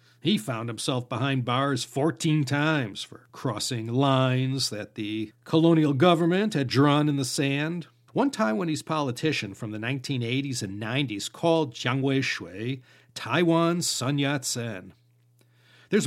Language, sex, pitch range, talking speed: English, male, 120-150 Hz, 125 wpm